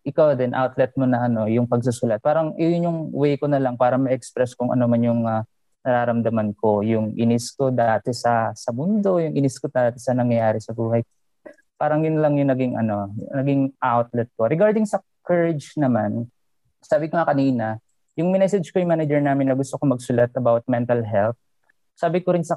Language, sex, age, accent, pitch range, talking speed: English, male, 20-39, Filipino, 115-145 Hz, 185 wpm